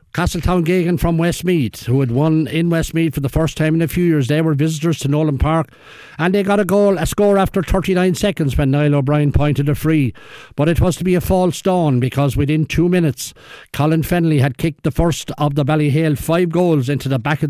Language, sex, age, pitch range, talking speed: English, male, 60-79, 135-170 Hz, 225 wpm